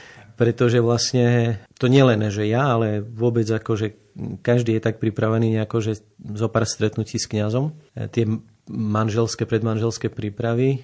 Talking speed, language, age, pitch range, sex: 125 wpm, Slovak, 40-59, 110-120 Hz, male